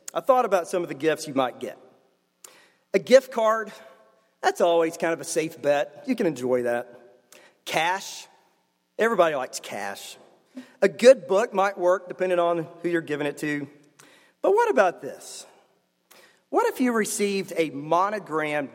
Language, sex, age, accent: English, male, 40-59, American